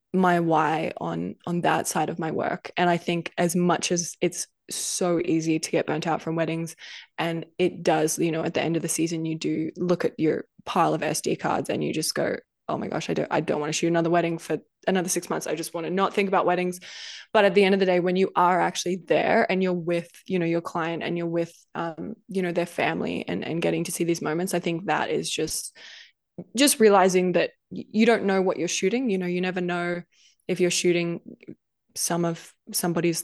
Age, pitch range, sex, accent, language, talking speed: 20-39, 165-185 Hz, female, Australian, English, 235 wpm